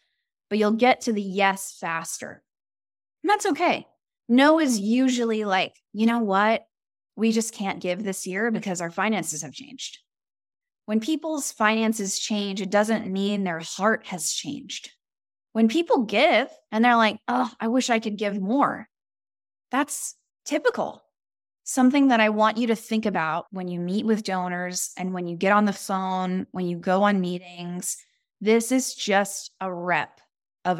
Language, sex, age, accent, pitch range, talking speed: English, female, 10-29, American, 195-270 Hz, 165 wpm